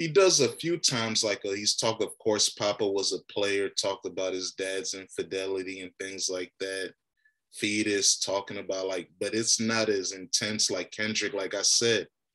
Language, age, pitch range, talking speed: English, 20-39, 100-120 Hz, 180 wpm